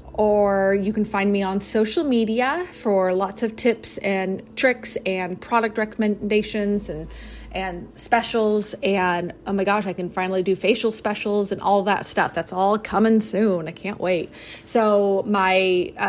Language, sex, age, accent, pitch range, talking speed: English, female, 30-49, American, 190-235 Hz, 160 wpm